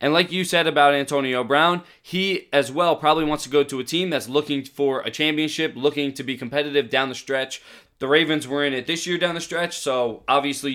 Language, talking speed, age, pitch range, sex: English, 230 wpm, 20-39, 130-150 Hz, male